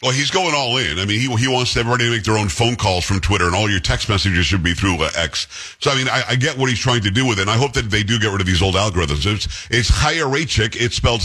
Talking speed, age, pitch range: 315 wpm, 50-69, 100-130 Hz